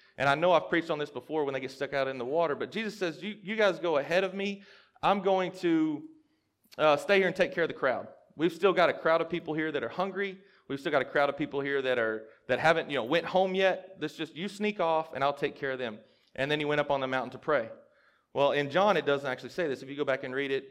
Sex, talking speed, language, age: male, 295 wpm, English, 30-49